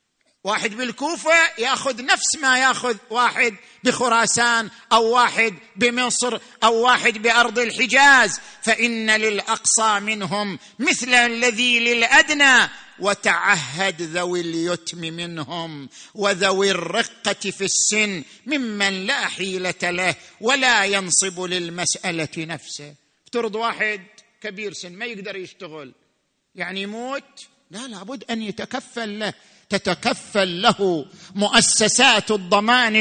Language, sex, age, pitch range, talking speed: Arabic, male, 50-69, 195-250 Hz, 100 wpm